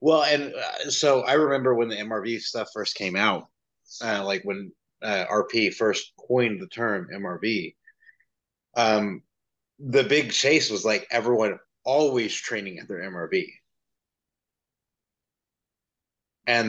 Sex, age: male, 30-49